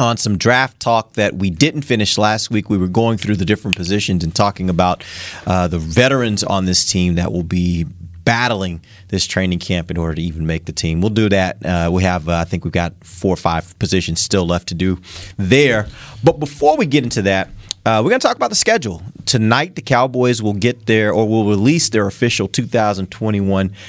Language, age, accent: English, 30-49, American